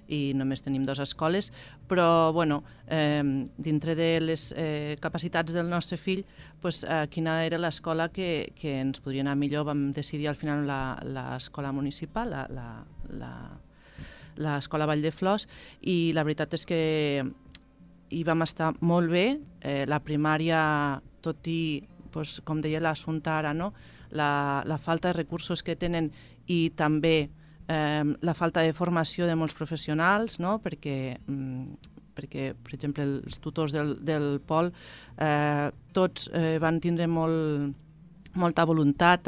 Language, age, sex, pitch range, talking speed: Spanish, 40-59, female, 145-165 Hz, 150 wpm